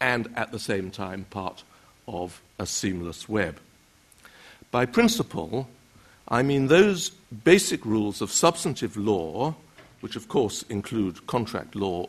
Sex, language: male, English